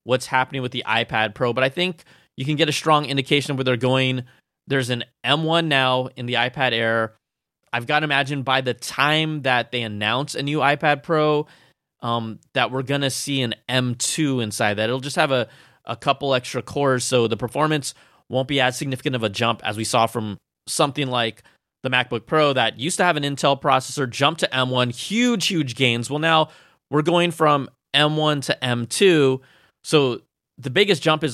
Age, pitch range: 20-39, 115-145 Hz